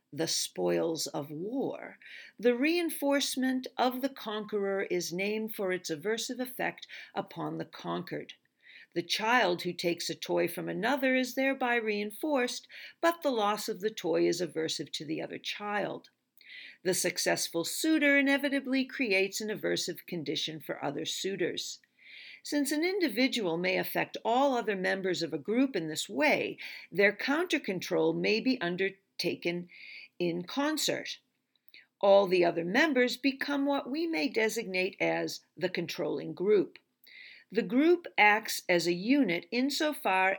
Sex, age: female, 50-69